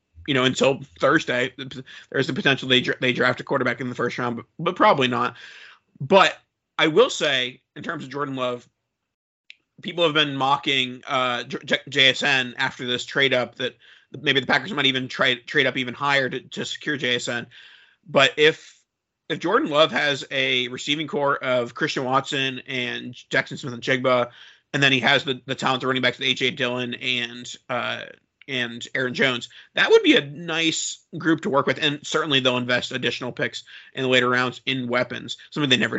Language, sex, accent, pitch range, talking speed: English, male, American, 125-140 Hz, 185 wpm